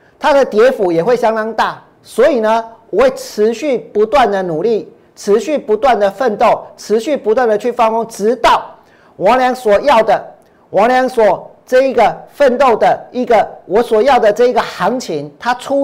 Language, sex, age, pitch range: Chinese, male, 50-69, 220-280 Hz